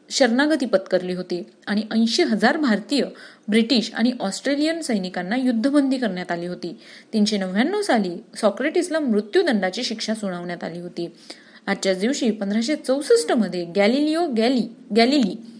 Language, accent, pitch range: Marathi, native, 190-270 Hz